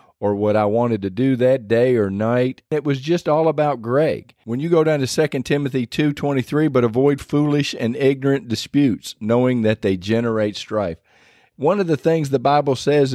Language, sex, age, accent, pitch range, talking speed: English, male, 40-59, American, 115-155 Hz, 200 wpm